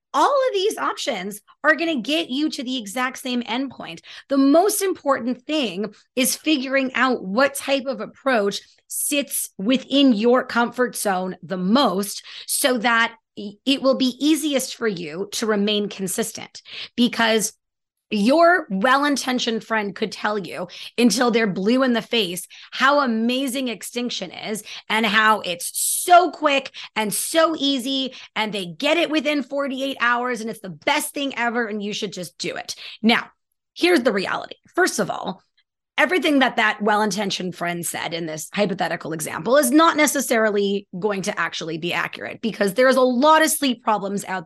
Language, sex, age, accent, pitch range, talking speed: English, female, 30-49, American, 205-270 Hz, 165 wpm